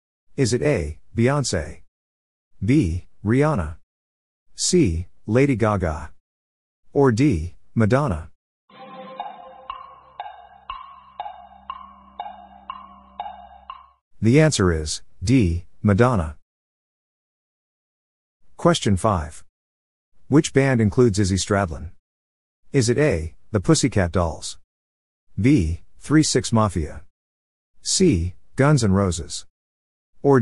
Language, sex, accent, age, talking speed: English, male, American, 50-69, 75 wpm